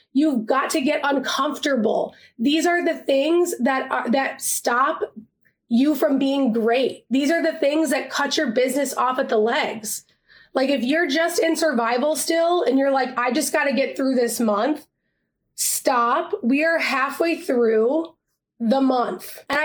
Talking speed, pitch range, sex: 170 wpm, 245-290 Hz, female